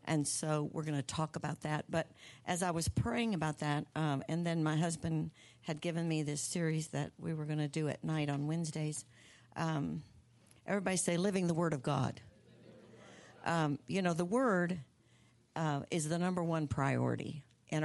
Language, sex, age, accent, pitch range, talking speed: English, female, 60-79, American, 150-180 Hz, 185 wpm